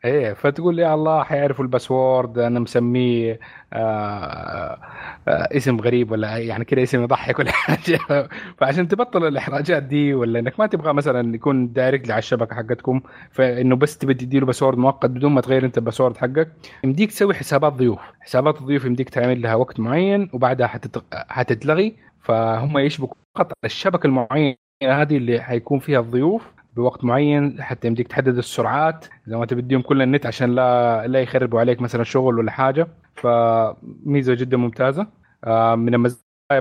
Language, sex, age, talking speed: Arabic, male, 30-49, 150 wpm